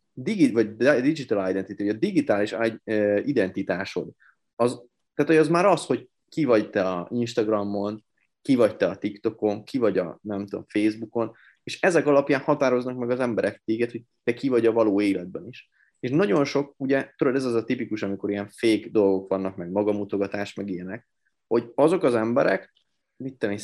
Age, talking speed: 30-49, 180 wpm